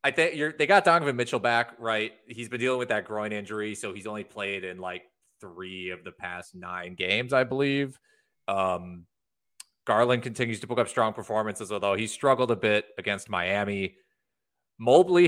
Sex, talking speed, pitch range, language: male, 175 wpm, 100-130 Hz, English